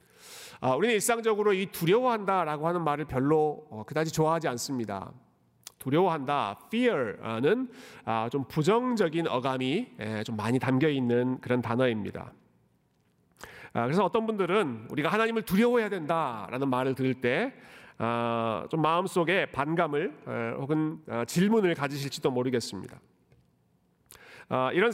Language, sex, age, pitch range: Korean, male, 40-59, 130-205 Hz